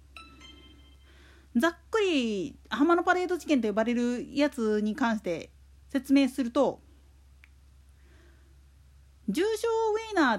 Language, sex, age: Japanese, female, 40-59